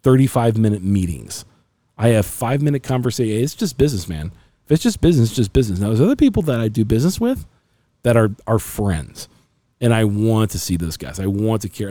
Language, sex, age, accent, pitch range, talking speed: English, male, 40-59, American, 105-130 Hz, 215 wpm